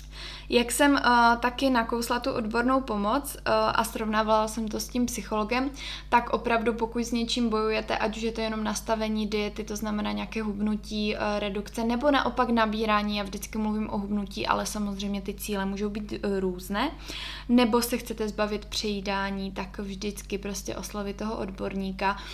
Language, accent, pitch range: Czech, native, 205-225 Hz